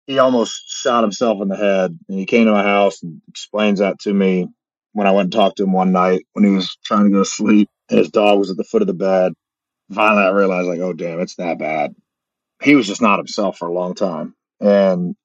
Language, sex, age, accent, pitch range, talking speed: English, male, 30-49, American, 95-115 Hz, 250 wpm